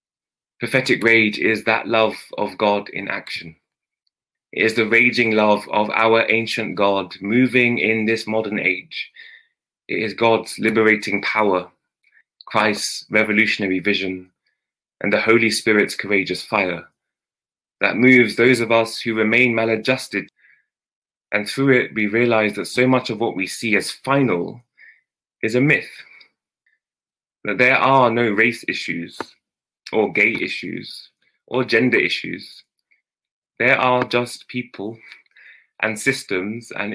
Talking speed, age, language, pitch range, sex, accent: 130 wpm, 20-39, English, 100-120 Hz, male, British